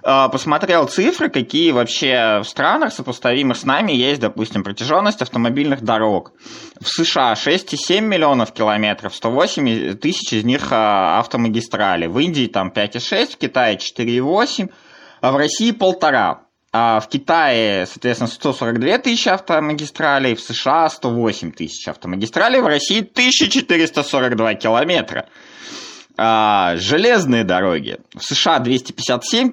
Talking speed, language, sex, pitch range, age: 115 wpm, Russian, male, 115-170 Hz, 20-39